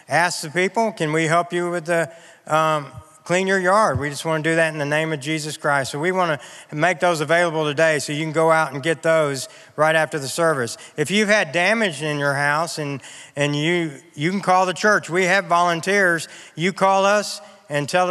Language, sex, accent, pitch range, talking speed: English, male, American, 150-185 Hz, 225 wpm